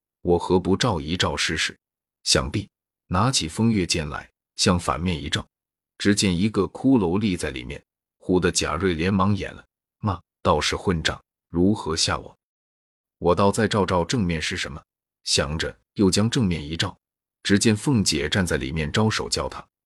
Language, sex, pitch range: Chinese, male, 80-105 Hz